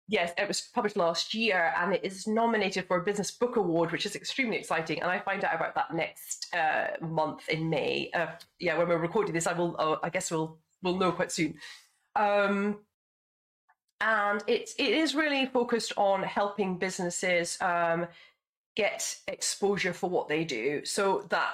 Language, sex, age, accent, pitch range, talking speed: English, female, 30-49, British, 170-210 Hz, 180 wpm